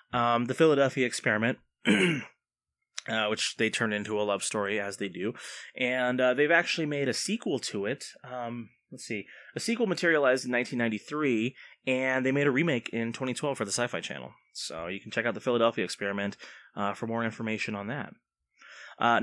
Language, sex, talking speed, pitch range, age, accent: English, male, 180 wpm, 110-140 Hz, 20-39, American